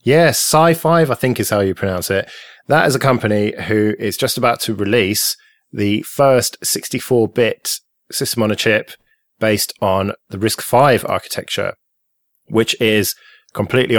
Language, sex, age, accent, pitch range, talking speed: English, male, 20-39, British, 100-120 Hz, 150 wpm